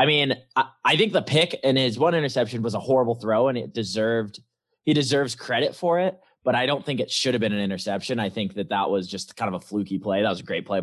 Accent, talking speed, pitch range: American, 270 wpm, 100-130 Hz